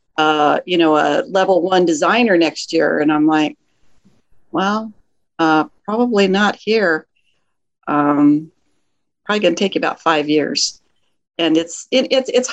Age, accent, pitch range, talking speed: 50-69, American, 165-215 Hz, 145 wpm